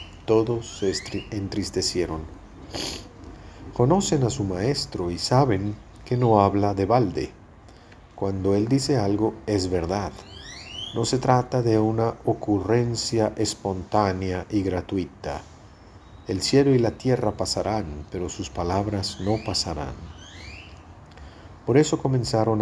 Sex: male